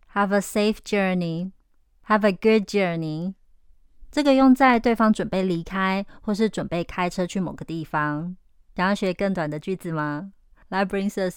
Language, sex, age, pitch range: Chinese, female, 20-39, 175-215 Hz